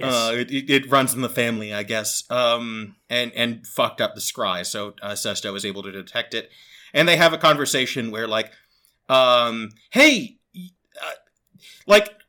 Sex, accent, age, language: male, American, 30-49, English